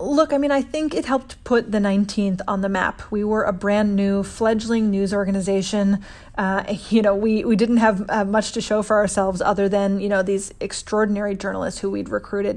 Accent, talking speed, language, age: American, 210 wpm, English, 30-49